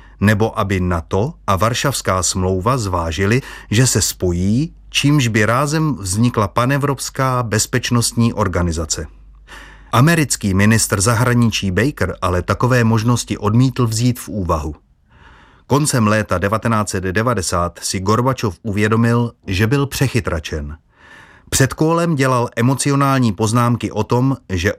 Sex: male